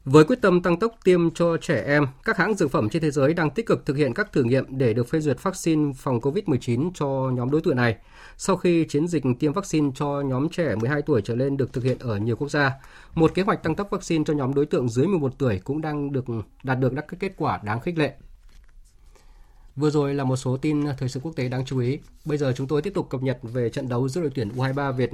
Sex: male